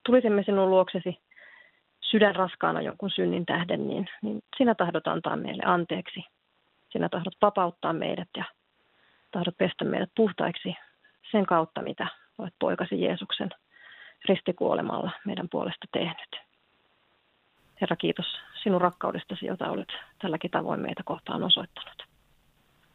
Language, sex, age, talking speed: Finnish, female, 30-49, 120 wpm